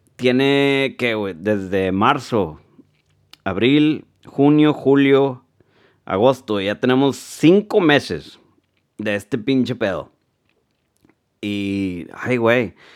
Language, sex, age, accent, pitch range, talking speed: Spanish, male, 30-49, Mexican, 110-155 Hz, 95 wpm